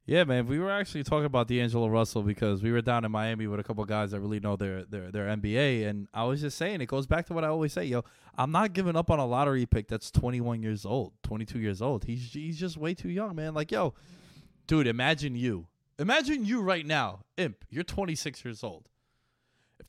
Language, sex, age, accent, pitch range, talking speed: English, male, 20-39, American, 110-155 Hz, 235 wpm